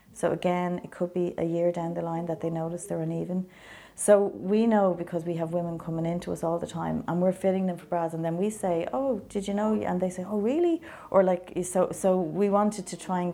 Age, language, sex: 30-49, English, female